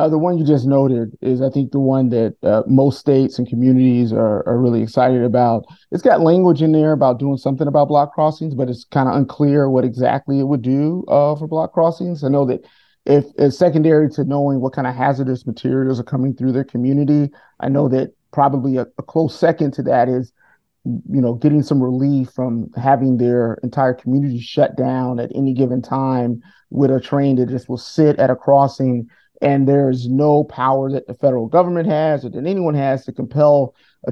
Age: 30-49